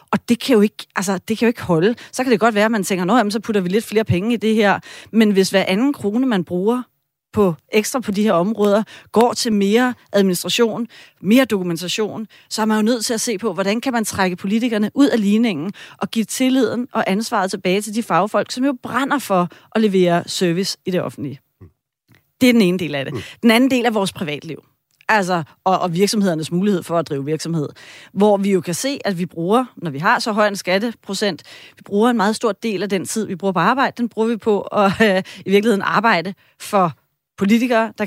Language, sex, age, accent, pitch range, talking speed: Danish, female, 30-49, native, 180-230 Hz, 230 wpm